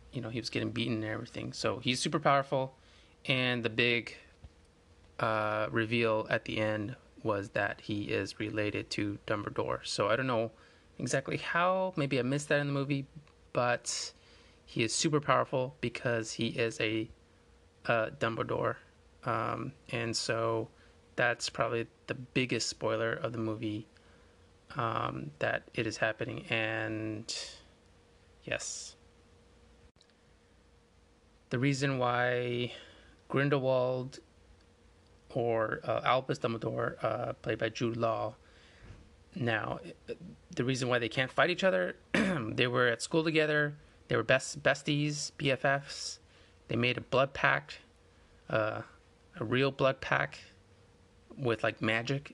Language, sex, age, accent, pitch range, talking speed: English, male, 20-39, American, 95-130 Hz, 130 wpm